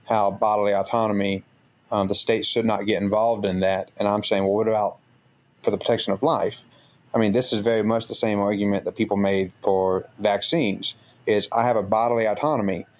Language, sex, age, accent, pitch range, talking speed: English, male, 30-49, American, 100-115 Hz, 200 wpm